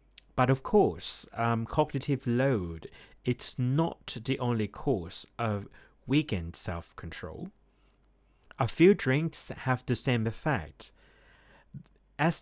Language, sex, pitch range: Thai, male, 105-140 Hz